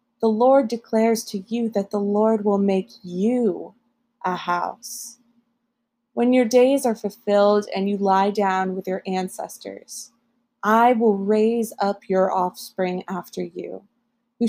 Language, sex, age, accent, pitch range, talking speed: English, female, 20-39, American, 195-240 Hz, 140 wpm